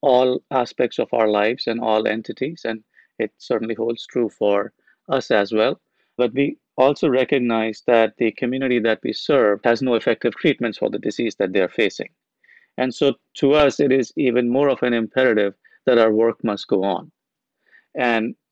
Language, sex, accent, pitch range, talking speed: English, male, Indian, 110-130 Hz, 180 wpm